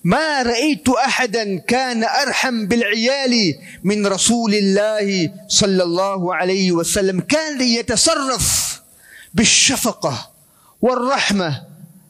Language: Spanish